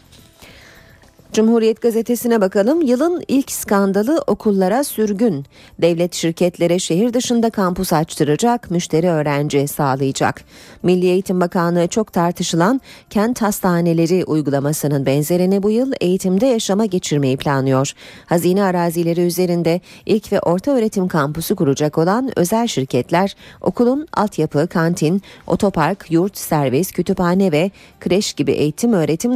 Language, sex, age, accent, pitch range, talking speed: Turkish, female, 40-59, native, 155-215 Hz, 115 wpm